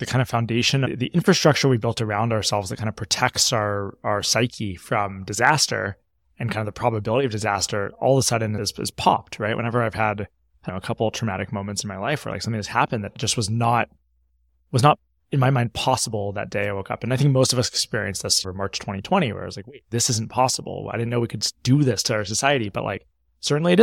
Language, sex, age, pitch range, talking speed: English, male, 20-39, 100-130 Hz, 250 wpm